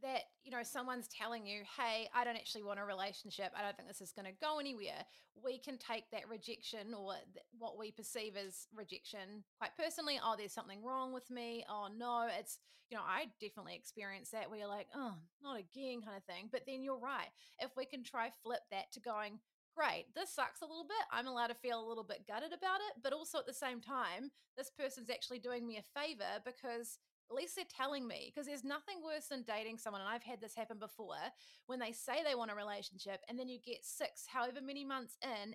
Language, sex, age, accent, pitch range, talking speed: English, female, 30-49, Australian, 215-265 Hz, 230 wpm